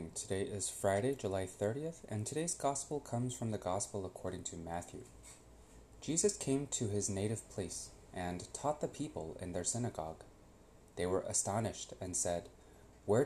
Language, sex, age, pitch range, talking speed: English, male, 30-49, 90-125 Hz, 155 wpm